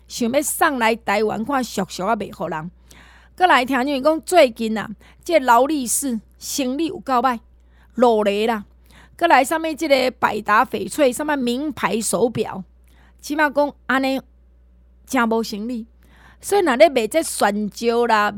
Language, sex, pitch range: Chinese, female, 215-295 Hz